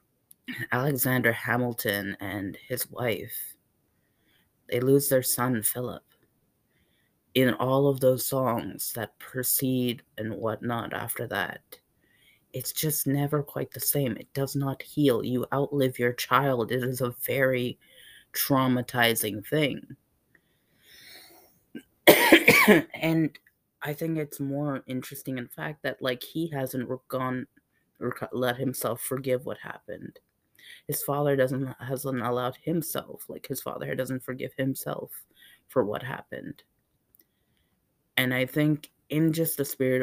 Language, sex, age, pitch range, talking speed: English, female, 30-49, 125-145 Hz, 125 wpm